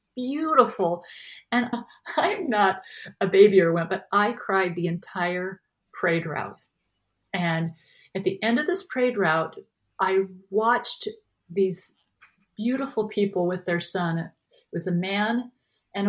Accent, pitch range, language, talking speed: American, 175-215 Hz, English, 135 wpm